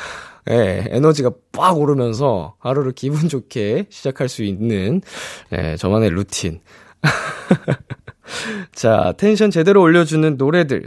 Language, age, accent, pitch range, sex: Korean, 20-39, native, 100-155 Hz, male